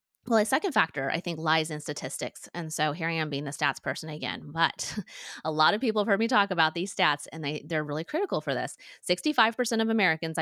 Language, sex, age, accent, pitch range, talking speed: English, female, 30-49, American, 145-185 Hz, 235 wpm